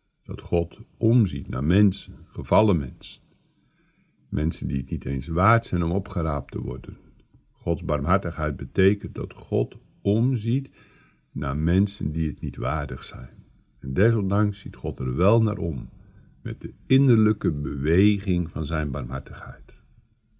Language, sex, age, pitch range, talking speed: Dutch, male, 60-79, 75-105 Hz, 135 wpm